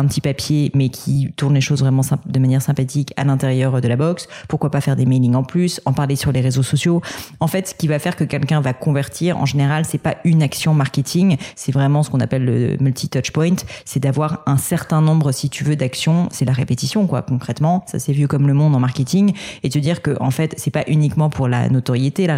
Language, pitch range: French, 140-170 Hz